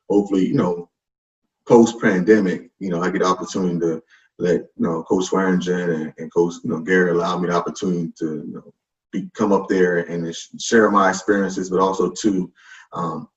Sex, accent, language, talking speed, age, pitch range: male, American, English, 185 wpm, 20-39, 85-105 Hz